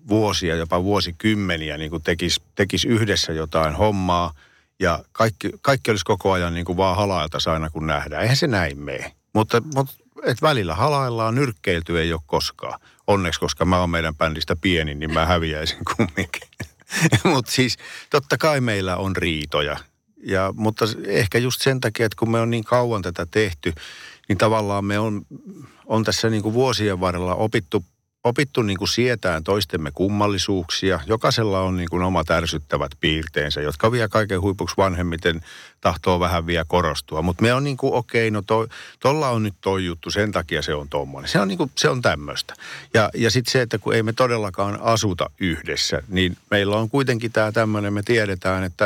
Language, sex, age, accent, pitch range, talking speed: Finnish, male, 50-69, native, 85-115 Hz, 165 wpm